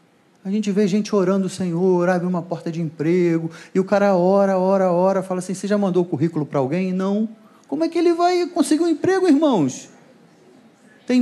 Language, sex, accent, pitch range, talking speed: Portuguese, male, Brazilian, 130-205 Hz, 205 wpm